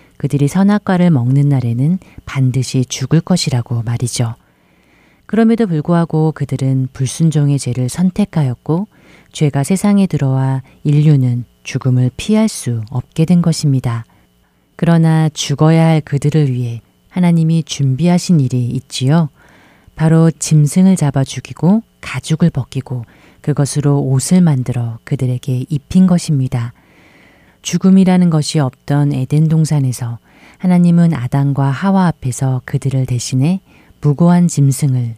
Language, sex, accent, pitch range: Korean, female, native, 130-175 Hz